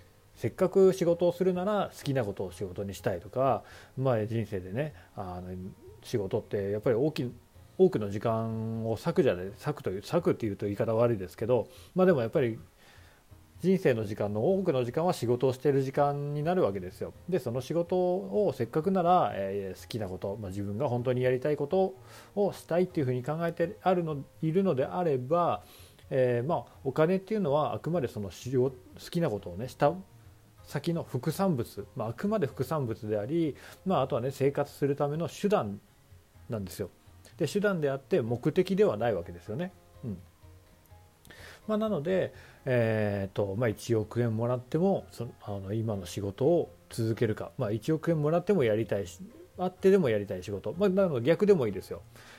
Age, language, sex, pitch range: 40-59, Japanese, male, 105-170 Hz